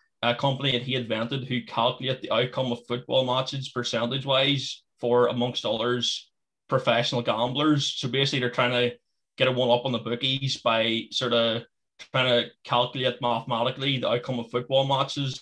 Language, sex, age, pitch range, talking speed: English, male, 20-39, 120-135 Hz, 165 wpm